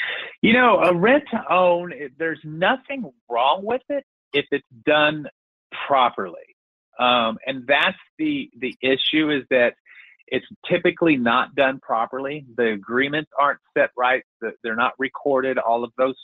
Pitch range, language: 135-185 Hz, English